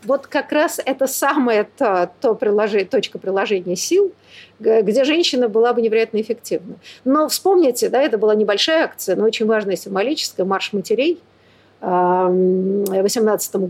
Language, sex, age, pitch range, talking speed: Russian, female, 50-69, 195-300 Hz, 140 wpm